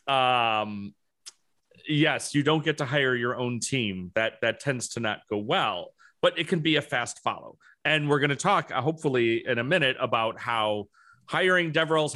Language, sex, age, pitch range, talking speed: English, male, 40-59, 125-155 Hz, 190 wpm